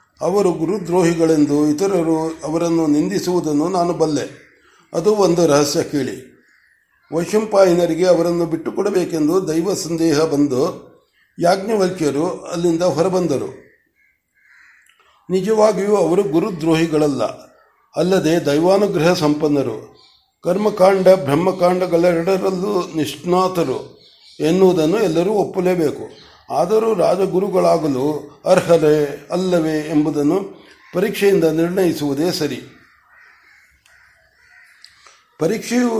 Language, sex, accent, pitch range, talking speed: Kannada, male, native, 150-180 Hz, 70 wpm